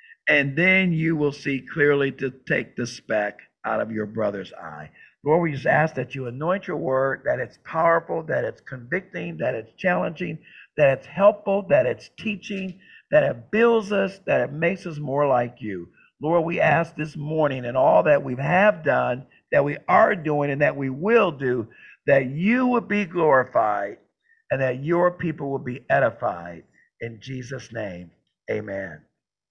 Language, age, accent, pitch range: English, 50-69, American, 140-185 Hz